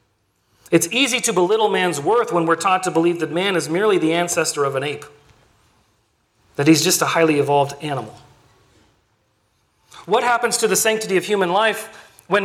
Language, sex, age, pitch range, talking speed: English, male, 40-59, 160-215 Hz, 175 wpm